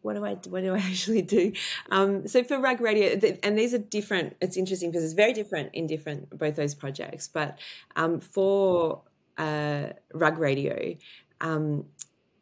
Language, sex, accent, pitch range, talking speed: English, female, Australian, 140-185 Hz, 175 wpm